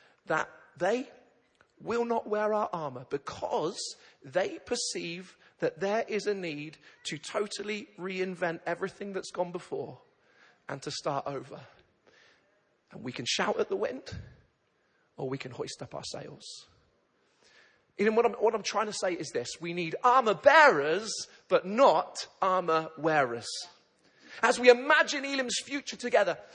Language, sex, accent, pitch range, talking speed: English, male, British, 195-265 Hz, 140 wpm